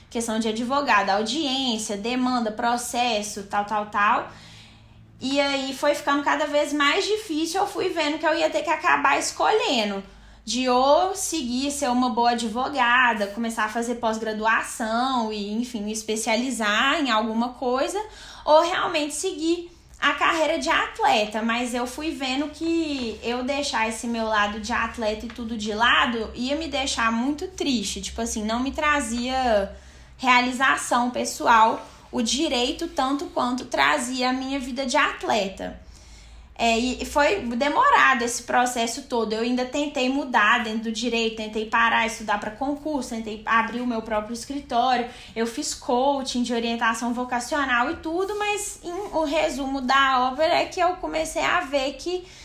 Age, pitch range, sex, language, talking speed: 10-29, 230-295 Hz, female, Portuguese, 150 wpm